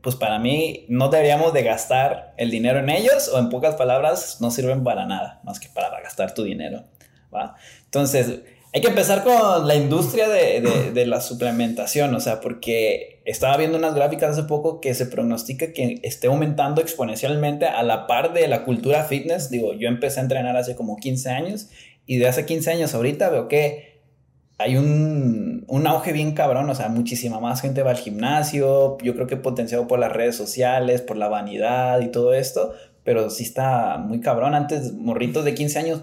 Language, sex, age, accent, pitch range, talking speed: Spanish, male, 20-39, Mexican, 125-155 Hz, 195 wpm